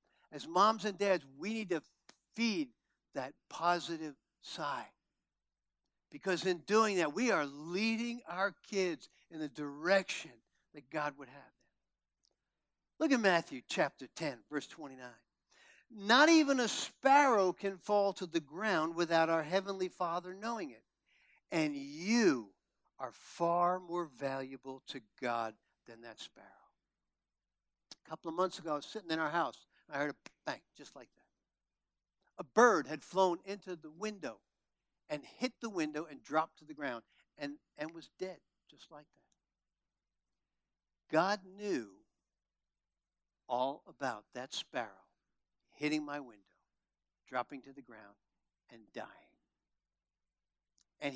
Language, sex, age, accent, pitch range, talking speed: English, male, 60-79, American, 135-190 Hz, 140 wpm